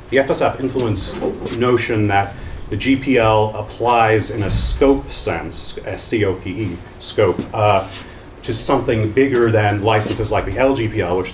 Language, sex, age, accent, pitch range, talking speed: English, male, 40-59, American, 95-115 Hz, 125 wpm